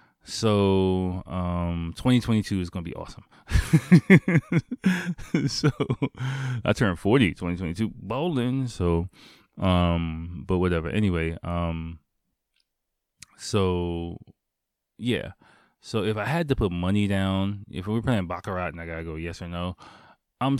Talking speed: 120 wpm